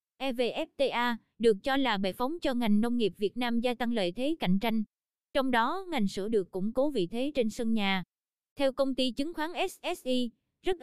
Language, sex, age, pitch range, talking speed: Vietnamese, female, 20-39, 205-260 Hz, 205 wpm